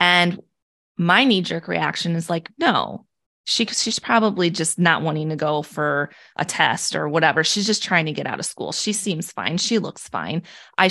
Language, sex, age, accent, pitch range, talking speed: English, female, 20-39, American, 165-215 Hz, 185 wpm